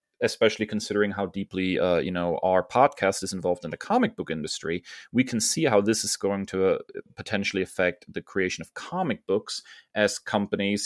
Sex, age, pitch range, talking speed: male, 30-49, 90-110 Hz, 190 wpm